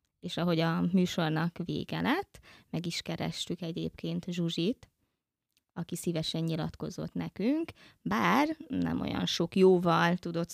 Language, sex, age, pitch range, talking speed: Hungarian, female, 20-39, 165-190 Hz, 120 wpm